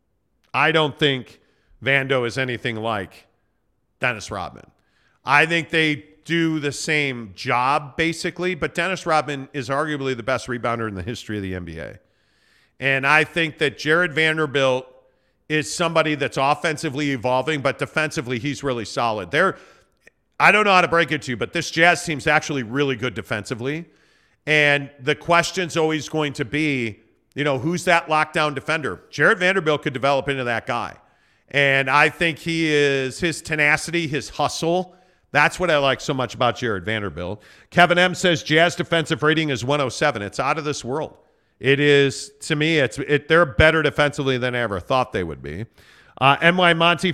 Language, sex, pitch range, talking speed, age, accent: English, male, 130-160 Hz, 170 wpm, 40-59, American